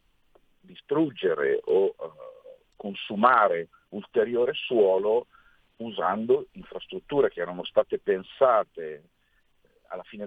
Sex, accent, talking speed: male, native, 75 wpm